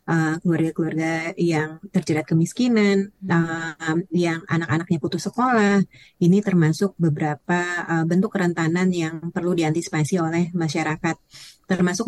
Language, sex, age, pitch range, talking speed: Indonesian, female, 30-49, 160-185 Hz, 110 wpm